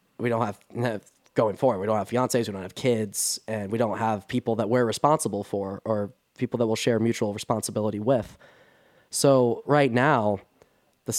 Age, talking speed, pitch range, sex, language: 10-29, 180 wpm, 105-130 Hz, male, English